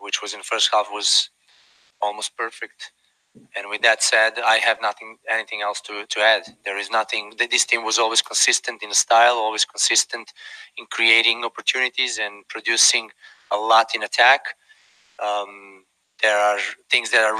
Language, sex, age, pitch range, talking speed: English, male, 20-39, 105-120 Hz, 170 wpm